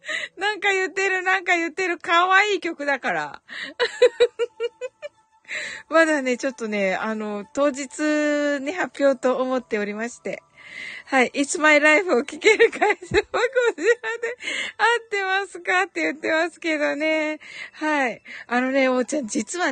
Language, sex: Japanese, female